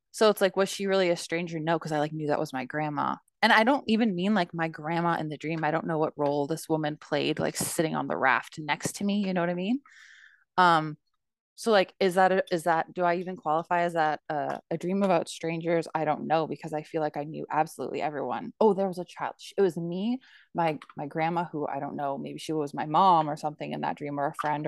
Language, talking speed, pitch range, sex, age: English, 260 wpm, 160-200 Hz, female, 20-39